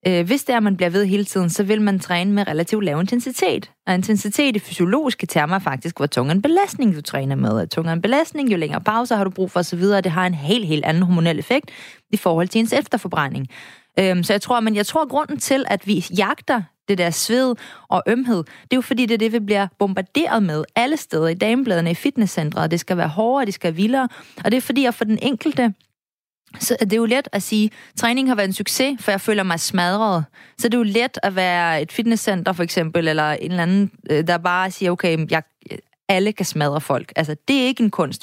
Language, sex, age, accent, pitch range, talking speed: Danish, female, 30-49, native, 175-230 Hz, 240 wpm